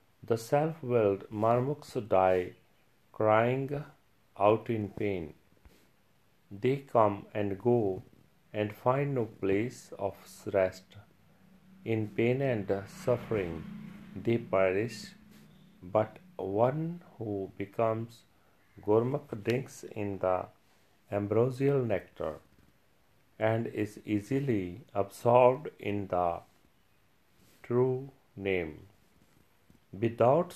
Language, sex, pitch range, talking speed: Punjabi, male, 100-130 Hz, 85 wpm